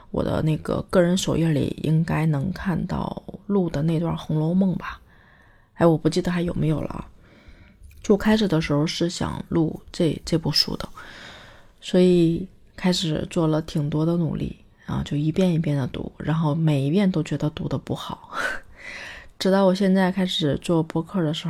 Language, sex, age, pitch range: Chinese, female, 20-39, 155-190 Hz